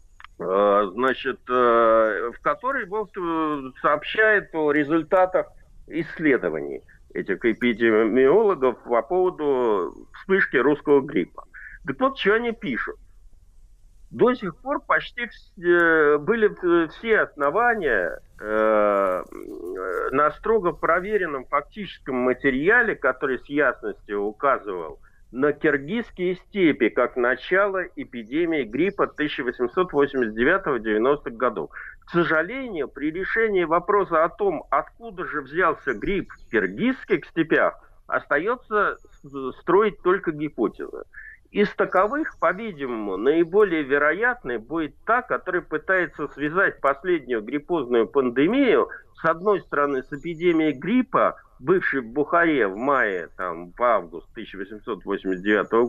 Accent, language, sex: native, Russian, male